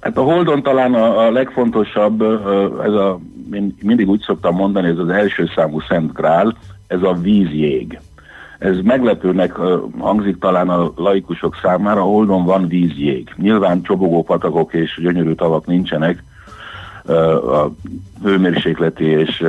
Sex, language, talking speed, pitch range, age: male, Hungarian, 135 wpm, 85-100 Hz, 60-79